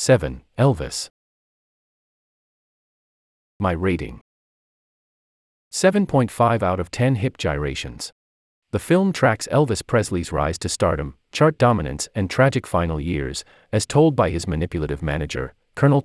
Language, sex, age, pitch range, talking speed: English, male, 40-59, 75-125 Hz, 115 wpm